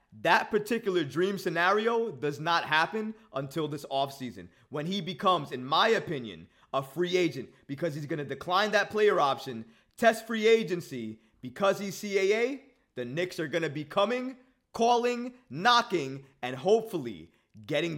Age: 30-49